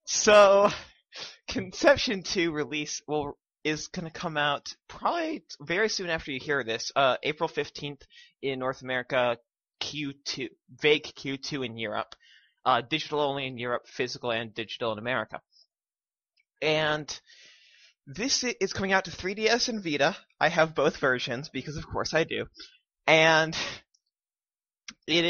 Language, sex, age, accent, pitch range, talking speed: English, male, 20-39, American, 130-185 Hz, 140 wpm